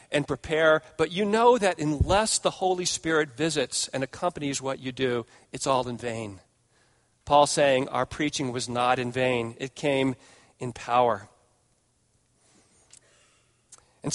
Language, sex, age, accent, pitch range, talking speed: English, male, 40-59, American, 130-155 Hz, 140 wpm